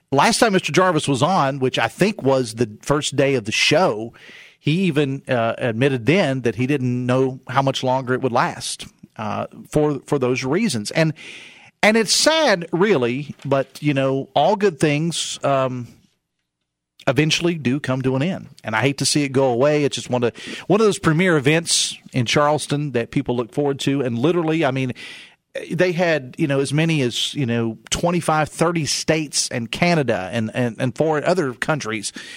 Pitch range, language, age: 125-160 Hz, English, 40-59